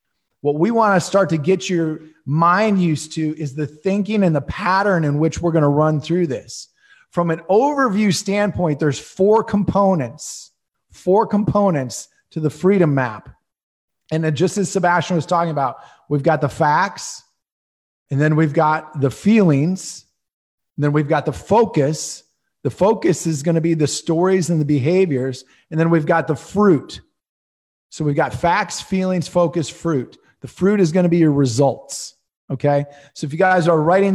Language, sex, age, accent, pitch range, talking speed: English, male, 30-49, American, 150-195 Hz, 175 wpm